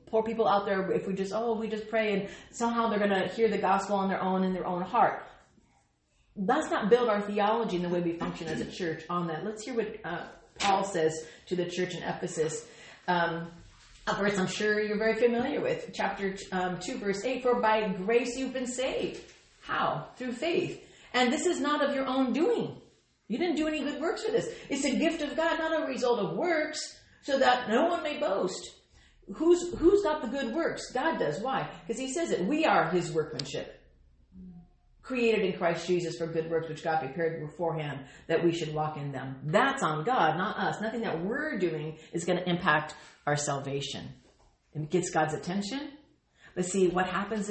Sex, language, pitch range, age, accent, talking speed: female, English, 165-245 Hz, 40-59, American, 205 wpm